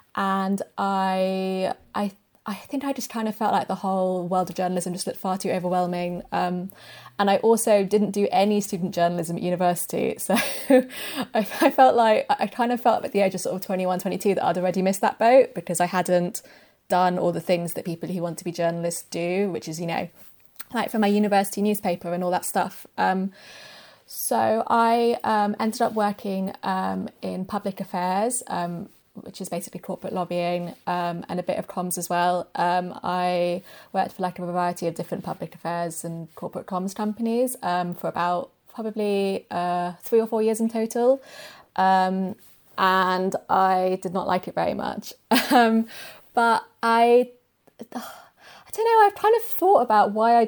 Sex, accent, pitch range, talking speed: female, British, 180-220 Hz, 185 wpm